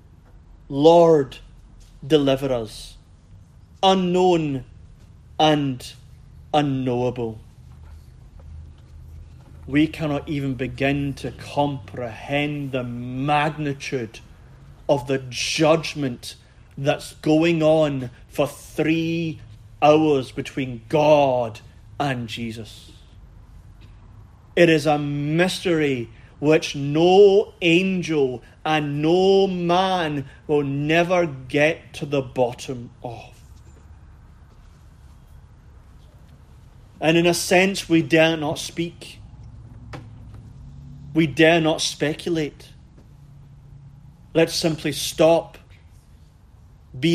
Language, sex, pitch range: English, male, 110-155 Hz